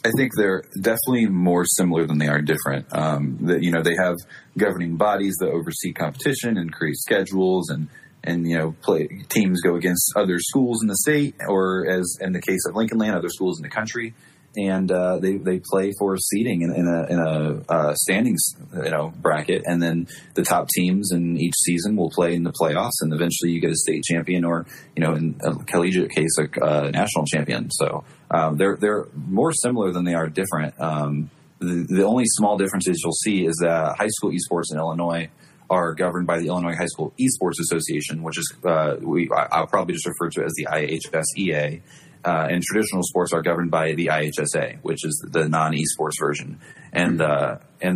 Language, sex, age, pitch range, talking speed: English, male, 30-49, 80-95 Hz, 205 wpm